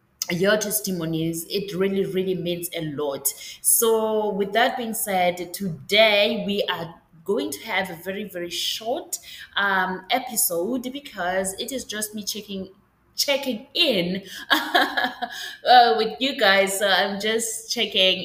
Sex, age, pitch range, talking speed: female, 20-39, 175-225 Hz, 130 wpm